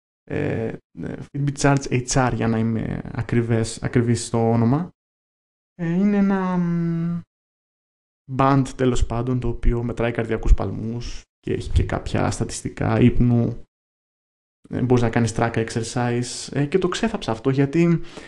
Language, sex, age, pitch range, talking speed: Greek, male, 20-39, 110-140 Hz, 115 wpm